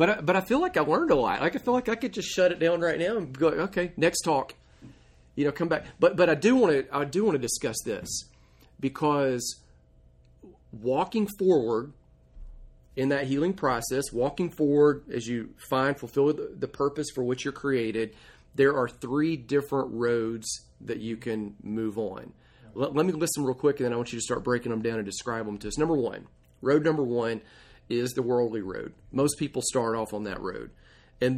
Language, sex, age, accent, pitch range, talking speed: English, male, 40-59, American, 115-150 Hz, 210 wpm